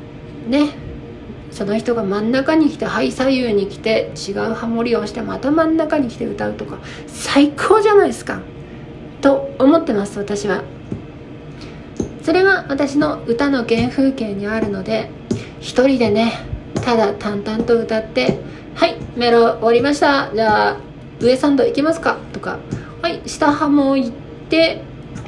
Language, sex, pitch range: Japanese, female, 210-295 Hz